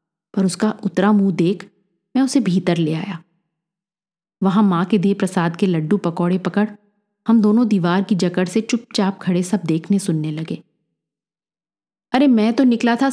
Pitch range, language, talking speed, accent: 180-220 Hz, Hindi, 165 wpm, native